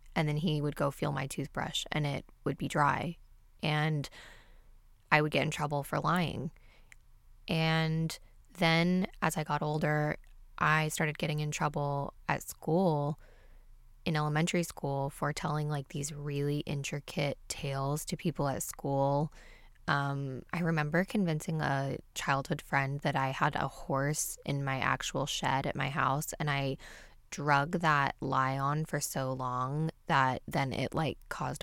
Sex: female